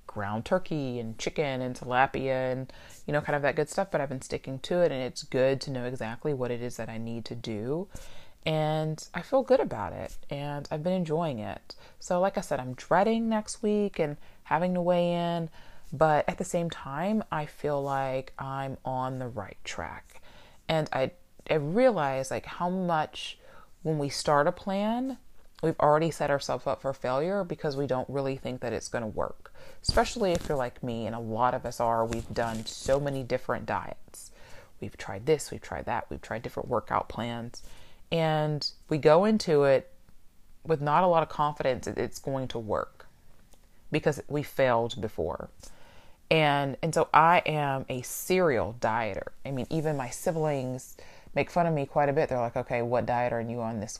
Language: English